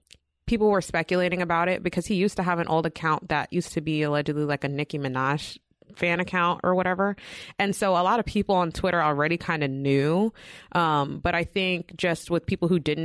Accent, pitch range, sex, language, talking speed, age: American, 145-175 Hz, female, English, 215 wpm, 20-39